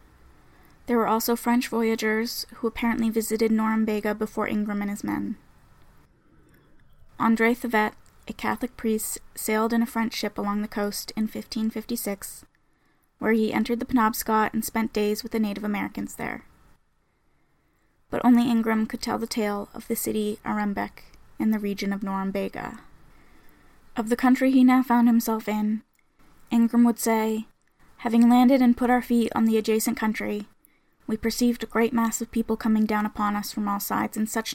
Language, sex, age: English, female, 10-29